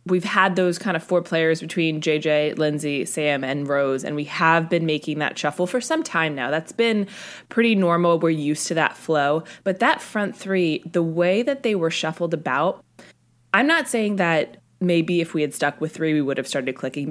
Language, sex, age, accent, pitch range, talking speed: English, female, 20-39, American, 150-195 Hz, 210 wpm